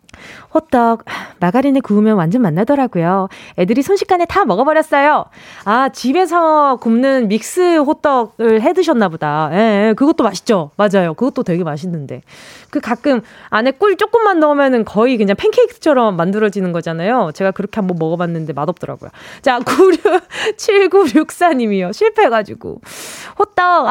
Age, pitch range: 20-39, 220-340 Hz